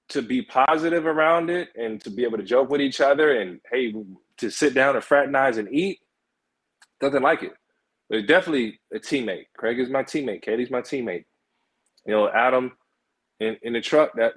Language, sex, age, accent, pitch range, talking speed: English, male, 20-39, American, 110-130 Hz, 190 wpm